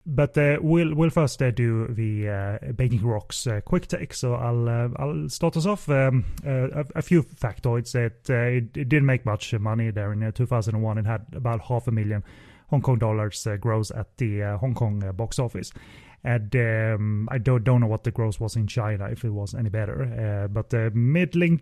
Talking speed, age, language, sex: 235 wpm, 30-49, English, male